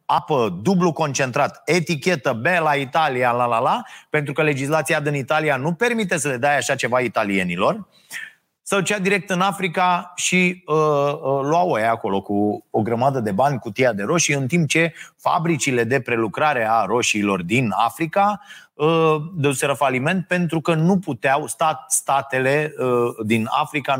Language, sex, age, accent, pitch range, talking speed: Romanian, male, 30-49, native, 125-170 Hz, 155 wpm